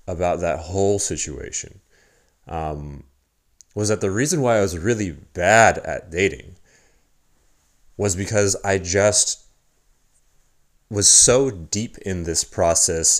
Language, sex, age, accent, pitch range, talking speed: English, male, 30-49, American, 80-100 Hz, 120 wpm